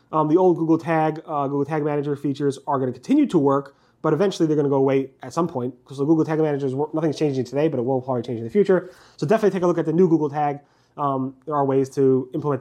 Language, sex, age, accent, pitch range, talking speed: English, male, 30-49, American, 135-160 Hz, 285 wpm